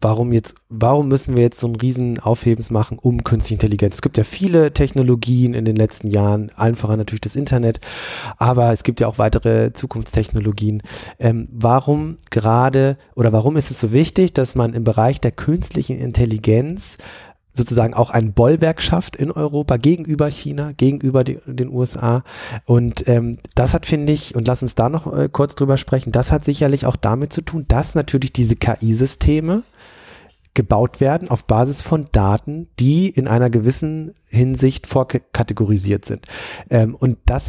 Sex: male